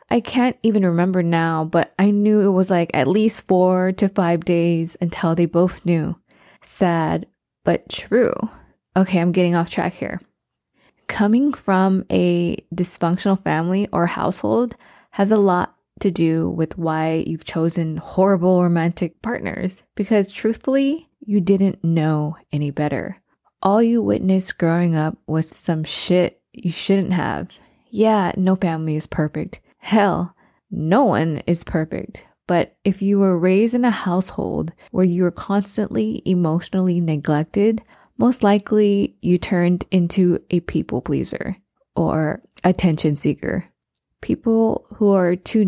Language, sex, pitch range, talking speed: English, female, 170-200 Hz, 140 wpm